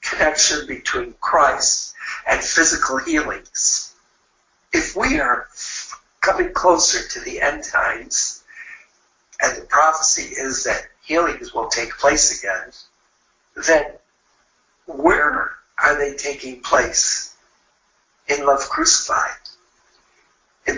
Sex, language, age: male, English, 60-79